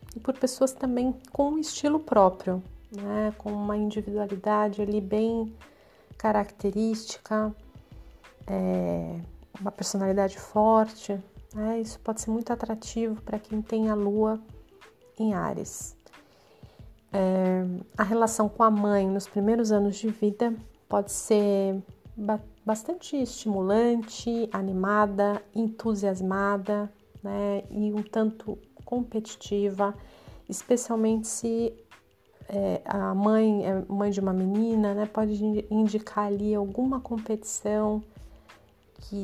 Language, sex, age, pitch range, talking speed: Portuguese, female, 40-59, 195-220 Hz, 100 wpm